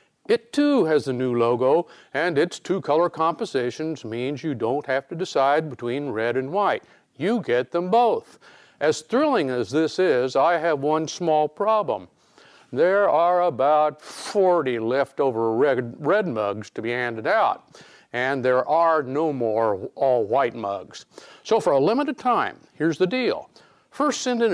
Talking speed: 160 wpm